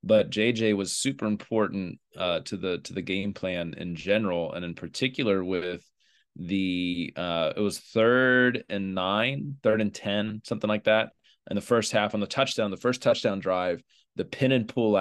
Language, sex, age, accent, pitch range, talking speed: English, male, 20-39, American, 95-110 Hz, 185 wpm